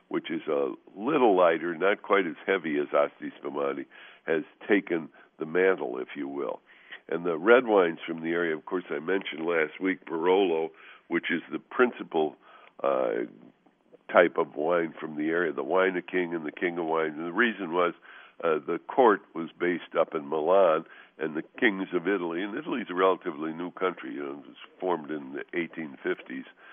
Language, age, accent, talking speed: English, 60-79, American, 190 wpm